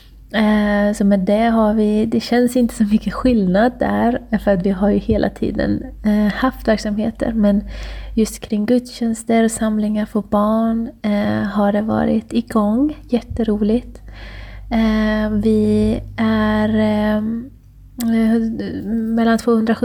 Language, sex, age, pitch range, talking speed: Swedish, female, 20-39, 210-235 Hz, 110 wpm